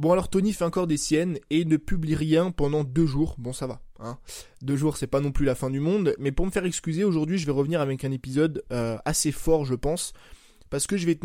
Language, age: French, 20-39